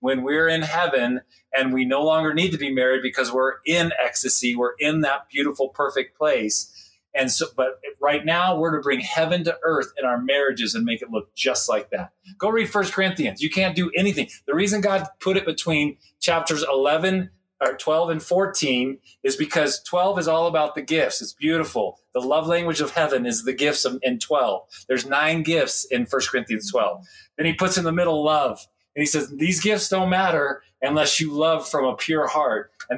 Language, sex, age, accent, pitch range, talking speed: English, male, 40-59, American, 130-165 Hz, 205 wpm